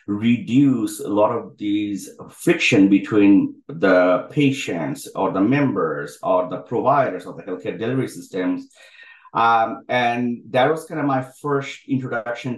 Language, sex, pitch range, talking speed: English, male, 105-145 Hz, 140 wpm